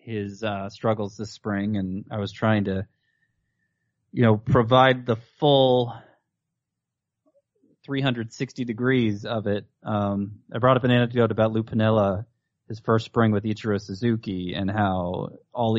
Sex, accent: male, American